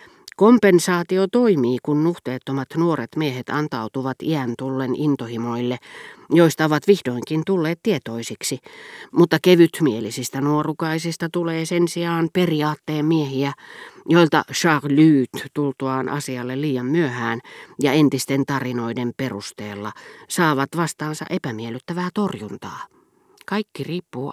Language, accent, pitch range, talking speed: Finnish, native, 135-185 Hz, 95 wpm